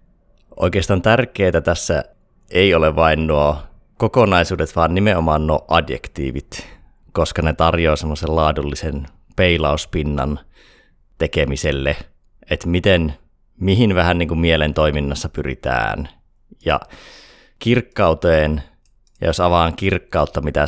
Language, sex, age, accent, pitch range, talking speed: Finnish, male, 30-49, native, 75-90 Hz, 100 wpm